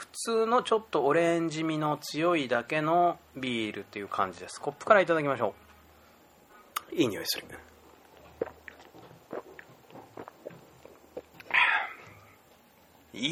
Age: 30-49